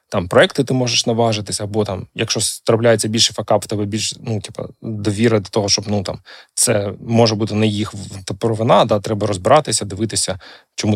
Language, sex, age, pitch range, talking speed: Ukrainian, male, 20-39, 105-125 Hz, 165 wpm